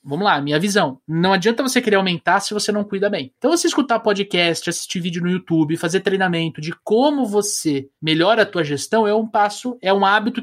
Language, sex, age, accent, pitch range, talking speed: Portuguese, male, 20-39, Brazilian, 160-210 Hz, 215 wpm